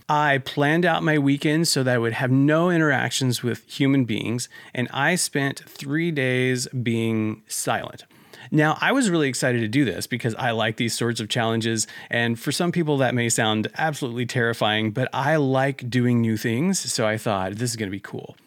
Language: English